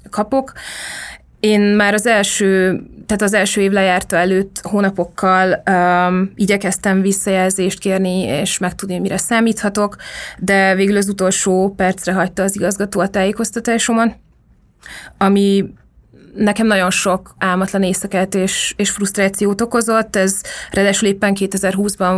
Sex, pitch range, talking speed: female, 185-205 Hz, 120 wpm